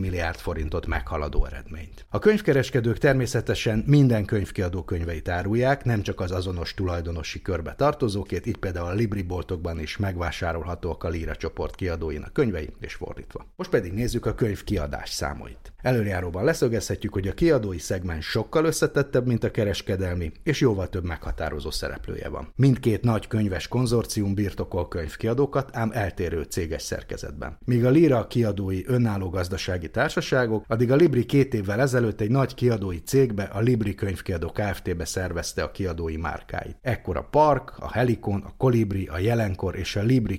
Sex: male